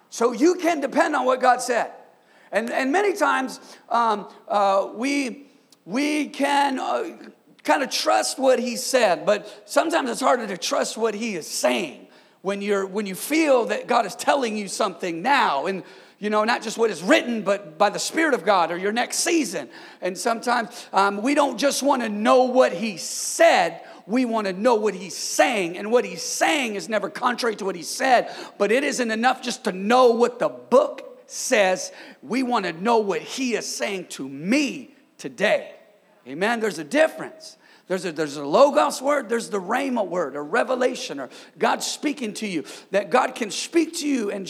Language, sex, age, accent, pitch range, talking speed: English, male, 40-59, American, 205-265 Hz, 195 wpm